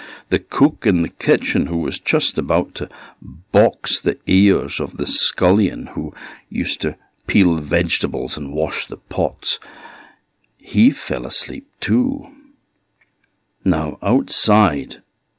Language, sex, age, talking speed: English, male, 60-79, 125 wpm